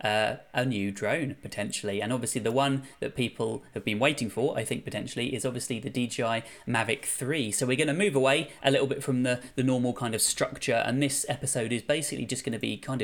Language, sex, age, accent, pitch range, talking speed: English, male, 20-39, British, 115-135 Hz, 230 wpm